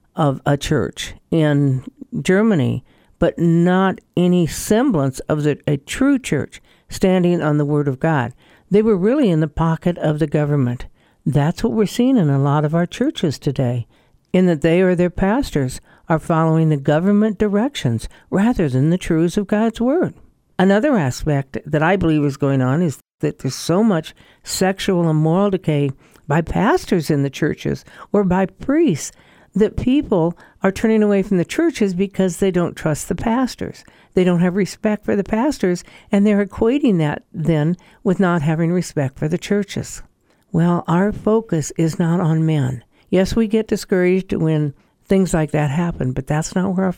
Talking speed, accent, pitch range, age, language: 175 wpm, American, 150-200 Hz, 60-79, English